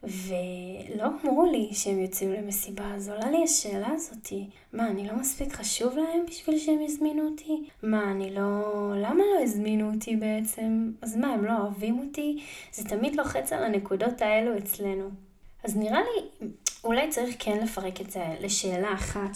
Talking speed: 165 wpm